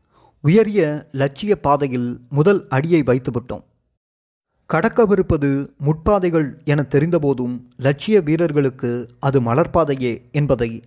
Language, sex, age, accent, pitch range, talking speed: Tamil, male, 30-49, native, 130-175 Hz, 85 wpm